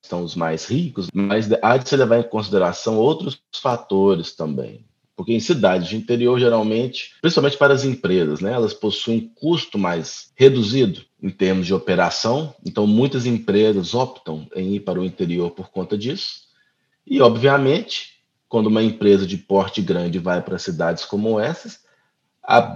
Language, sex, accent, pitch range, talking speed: English, male, Brazilian, 100-140 Hz, 160 wpm